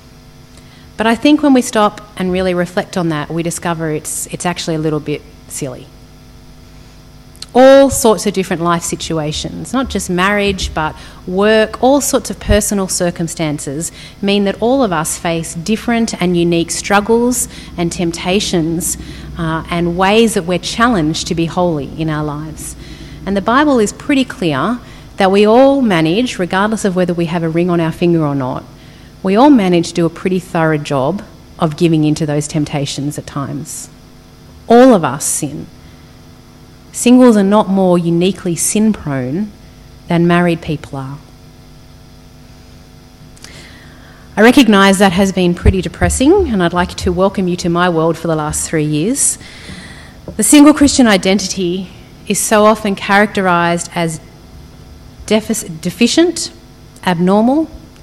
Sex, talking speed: female, 150 wpm